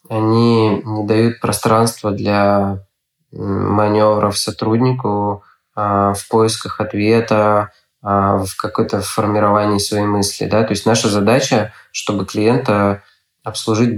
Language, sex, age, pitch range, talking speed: Russian, male, 20-39, 105-115 Hz, 100 wpm